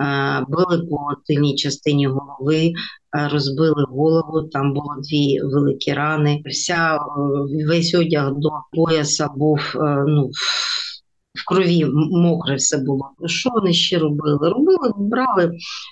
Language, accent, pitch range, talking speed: Ukrainian, native, 150-180 Hz, 110 wpm